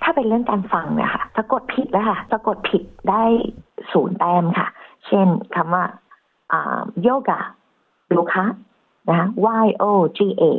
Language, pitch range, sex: Thai, 180-220 Hz, female